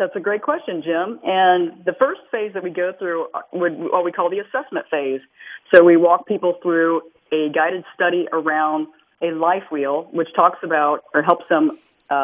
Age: 40-59